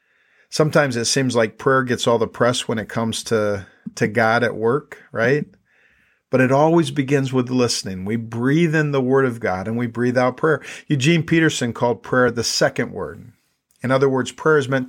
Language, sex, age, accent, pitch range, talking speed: English, male, 50-69, American, 120-140 Hz, 200 wpm